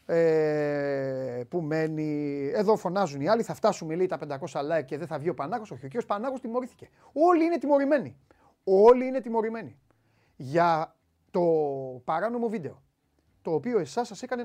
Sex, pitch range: male, 160-235 Hz